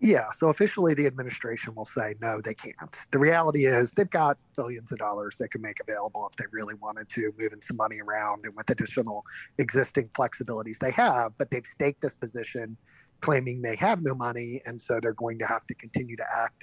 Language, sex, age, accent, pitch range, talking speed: English, male, 30-49, American, 115-145 Hz, 210 wpm